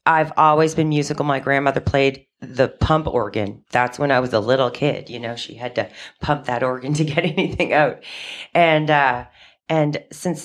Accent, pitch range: American, 130-160 Hz